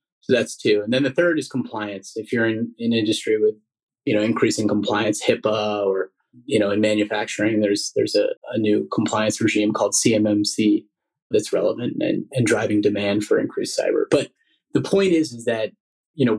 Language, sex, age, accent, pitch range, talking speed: English, male, 30-49, American, 105-130 Hz, 190 wpm